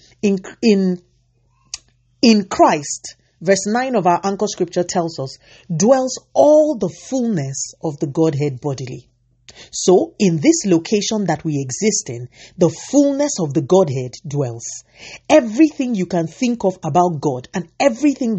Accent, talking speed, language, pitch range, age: Nigerian, 140 wpm, English, 145-215 Hz, 40-59